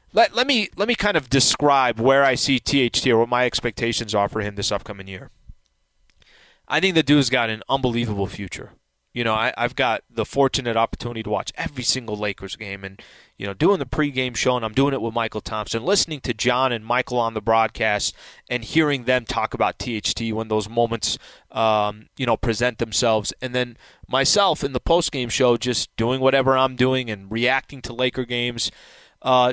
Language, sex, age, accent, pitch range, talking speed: English, male, 20-39, American, 110-140 Hz, 200 wpm